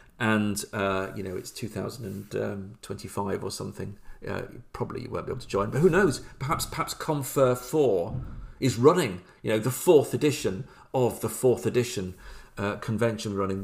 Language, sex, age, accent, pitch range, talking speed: English, male, 40-59, British, 105-135 Hz, 165 wpm